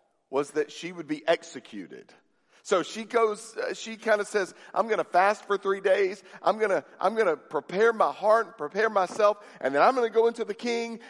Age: 50-69